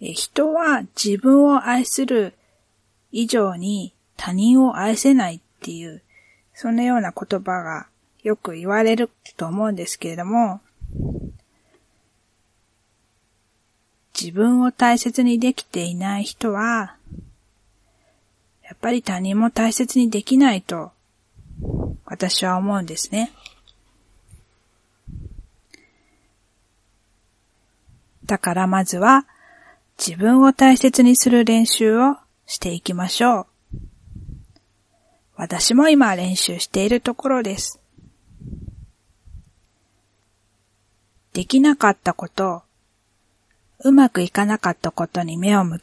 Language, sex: Japanese, female